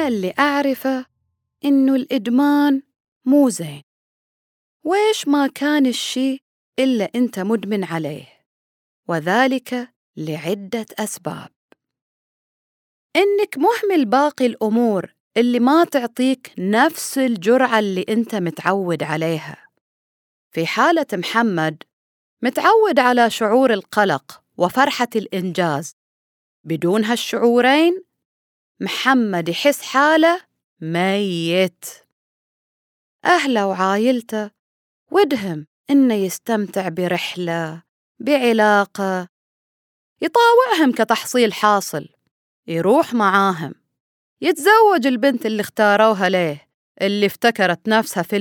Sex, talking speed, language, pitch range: female, 80 wpm, Arabic, 185-270 Hz